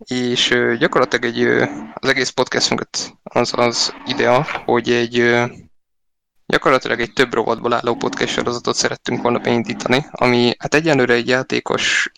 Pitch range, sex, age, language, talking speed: 120-130 Hz, male, 20-39, Hungarian, 130 wpm